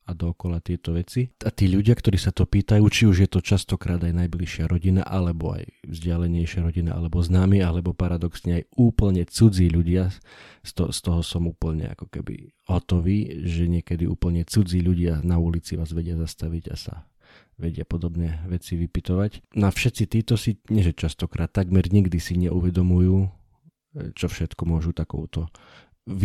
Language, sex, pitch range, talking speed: Slovak, male, 85-95 Hz, 160 wpm